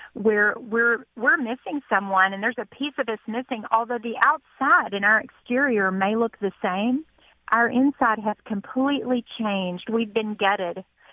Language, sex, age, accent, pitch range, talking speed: English, female, 40-59, American, 205-245 Hz, 160 wpm